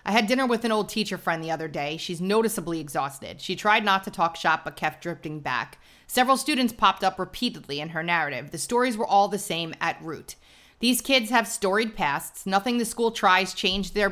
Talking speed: 215 wpm